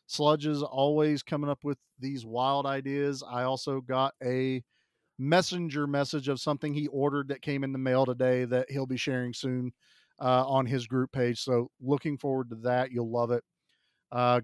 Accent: American